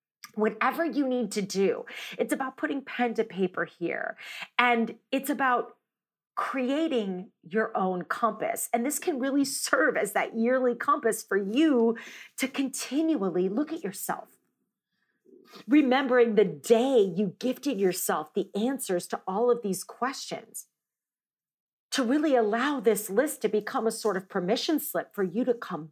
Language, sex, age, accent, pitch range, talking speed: English, female, 40-59, American, 210-275 Hz, 150 wpm